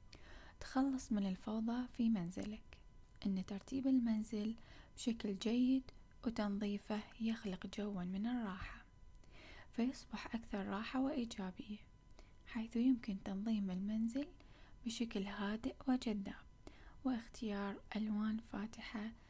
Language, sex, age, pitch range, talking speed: Arabic, female, 10-29, 210-235 Hz, 90 wpm